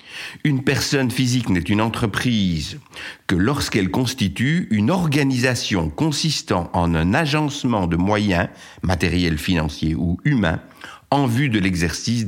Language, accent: French, French